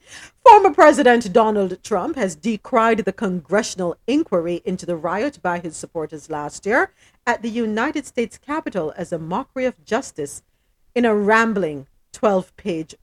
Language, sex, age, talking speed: English, female, 50-69, 145 wpm